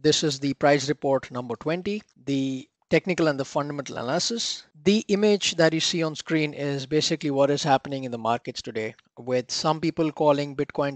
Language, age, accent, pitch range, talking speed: English, 20-39, Indian, 135-165 Hz, 185 wpm